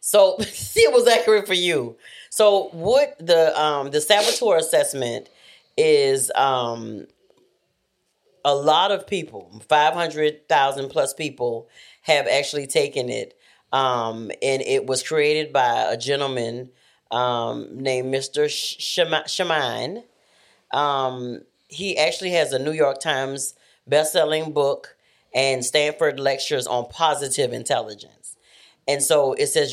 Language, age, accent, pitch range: English, 40-59, American, 135-195 Hz